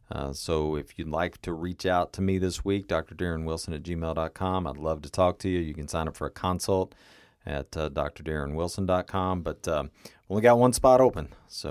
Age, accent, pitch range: 40-59, American, 75-95 Hz